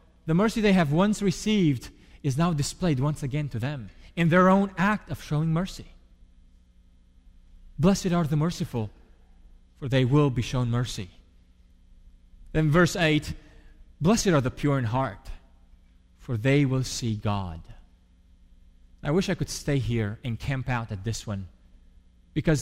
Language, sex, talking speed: English, male, 150 wpm